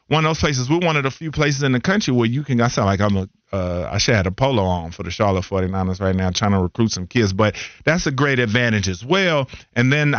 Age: 40-59